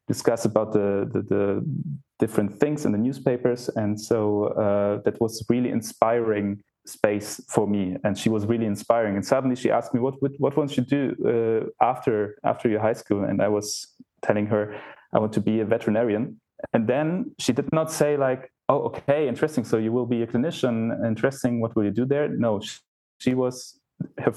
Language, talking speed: English, 195 wpm